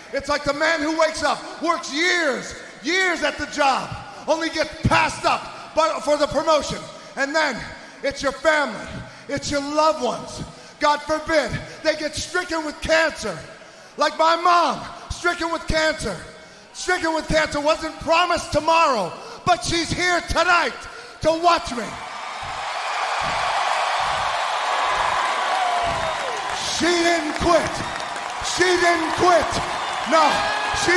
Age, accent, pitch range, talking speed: 30-49, American, 280-335 Hz, 120 wpm